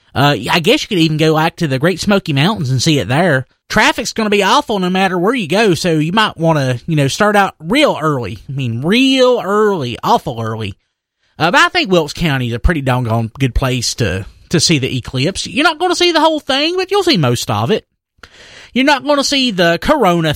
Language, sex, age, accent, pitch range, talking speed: English, male, 30-49, American, 145-225 Hz, 245 wpm